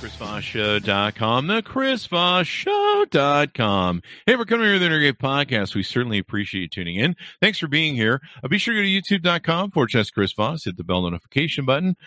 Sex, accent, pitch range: male, American, 95-160 Hz